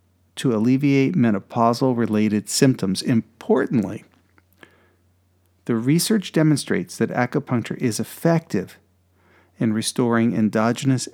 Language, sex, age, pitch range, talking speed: English, male, 40-59, 105-135 Hz, 80 wpm